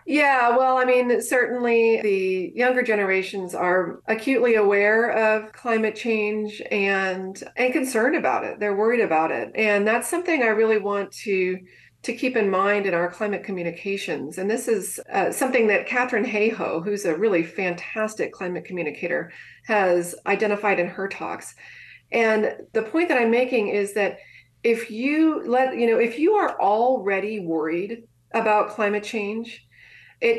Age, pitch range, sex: 40-59, 185-235 Hz, female